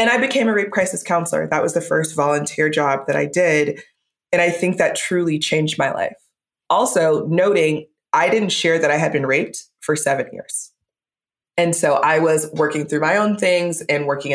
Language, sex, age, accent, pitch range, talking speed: English, female, 20-39, American, 150-195 Hz, 200 wpm